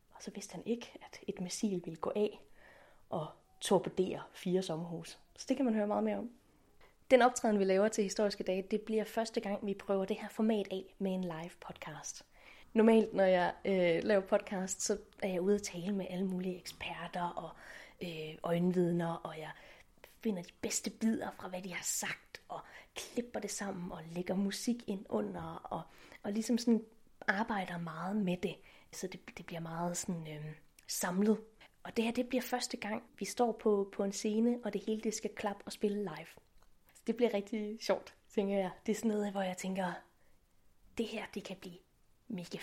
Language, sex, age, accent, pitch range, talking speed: Danish, female, 30-49, native, 185-225 Hz, 200 wpm